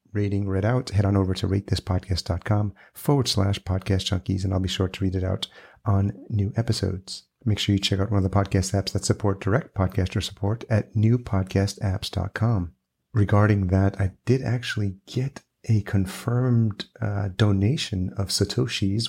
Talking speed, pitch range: 165 wpm, 95-110 Hz